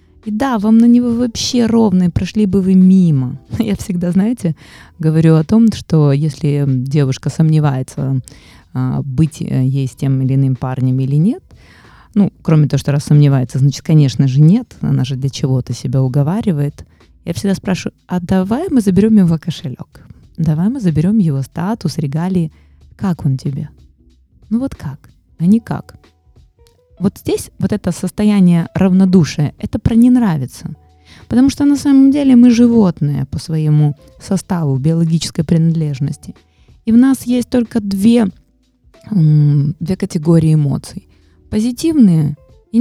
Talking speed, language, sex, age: 145 wpm, Russian, female, 20-39